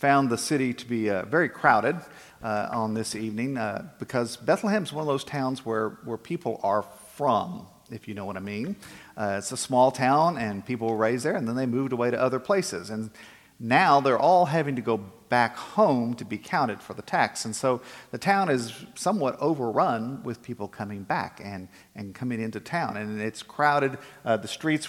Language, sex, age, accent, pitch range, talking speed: English, male, 50-69, American, 110-130 Hz, 205 wpm